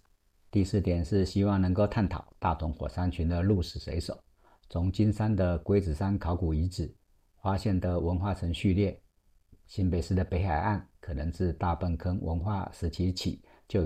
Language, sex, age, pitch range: Chinese, male, 50-69, 85-105 Hz